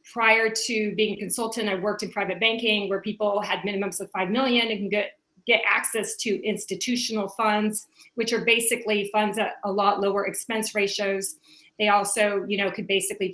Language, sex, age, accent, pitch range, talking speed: English, female, 30-49, American, 195-230 Hz, 180 wpm